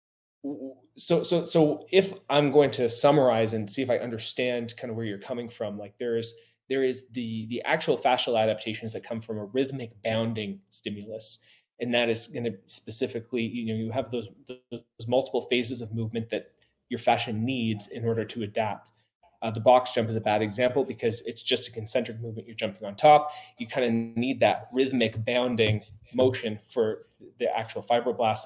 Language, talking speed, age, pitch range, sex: English, 190 wpm, 20-39, 110-130 Hz, male